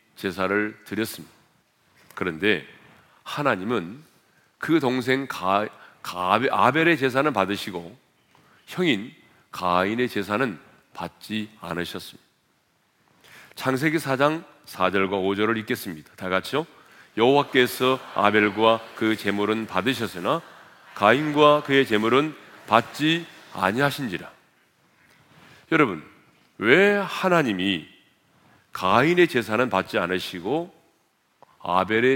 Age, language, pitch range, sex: 40-59, Korean, 100-135 Hz, male